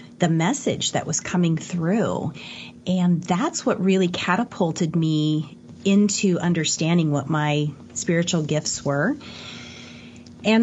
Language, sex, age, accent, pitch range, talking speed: English, female, 30-49, American, 170-215 Hz, 115 wpm